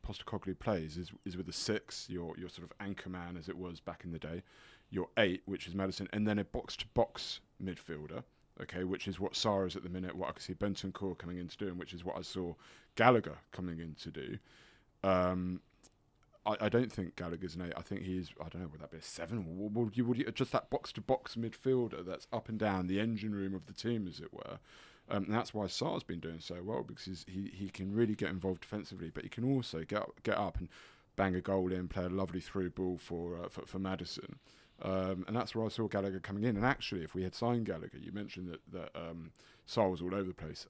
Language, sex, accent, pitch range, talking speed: English, male, British, 90-110 Hz, 250 wpm